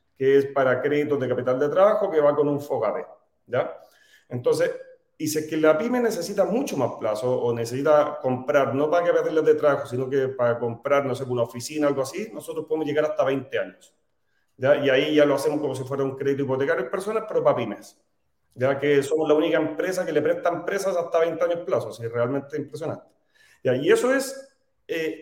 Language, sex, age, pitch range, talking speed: Spanish, male, 30-49, 135-185 Hz, 215 wpm